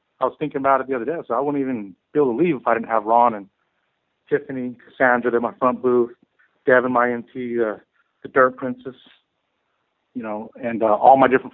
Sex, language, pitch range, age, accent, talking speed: male, English, 120-135 Hz, 30-49, American, 220 wpm